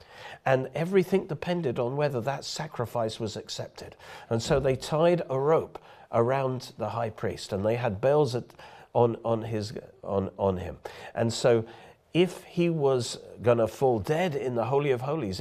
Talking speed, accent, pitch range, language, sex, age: 165 wpm, British, 115-155 Hz, English, male, 50-69